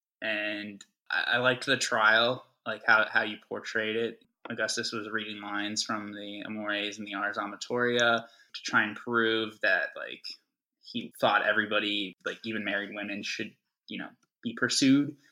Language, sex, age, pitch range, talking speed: English, male, 10-29, 105-130 Hz, 155 wpm